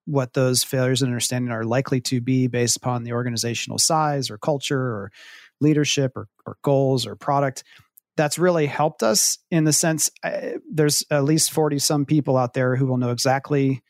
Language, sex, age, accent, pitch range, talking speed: English, male, 40-59, American, 130-150 Hz, 180 wpm